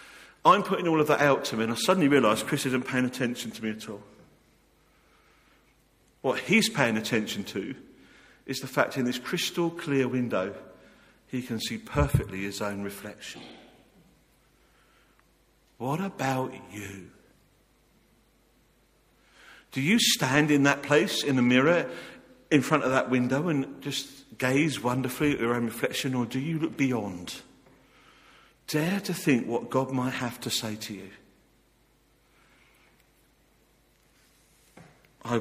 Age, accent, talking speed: 50-69, British, 140 wpm